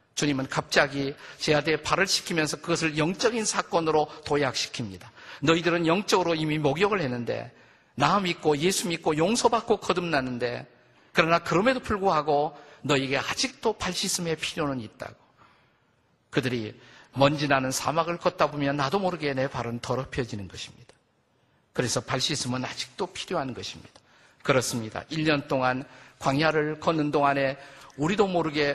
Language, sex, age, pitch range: Korean, male, 50-69, 140-175 Hz